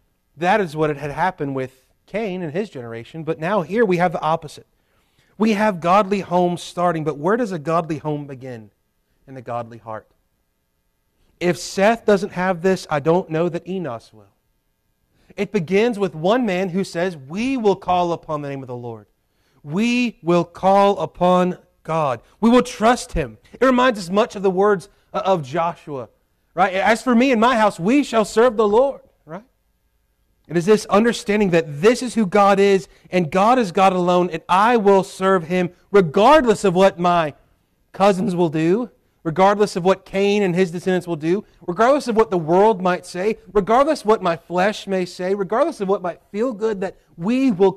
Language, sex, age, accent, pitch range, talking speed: English, male, 30-49, American, 155-205 Hz, 190 wpm